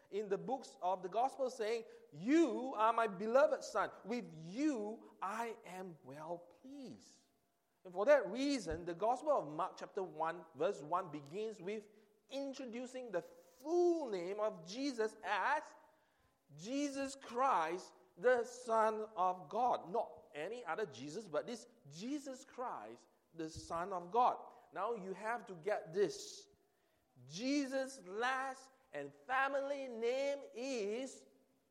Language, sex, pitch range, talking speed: English, male, 150-250 Hz, 130 wpm